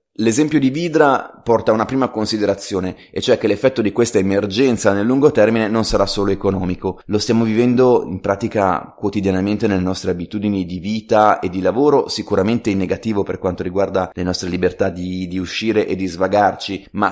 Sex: male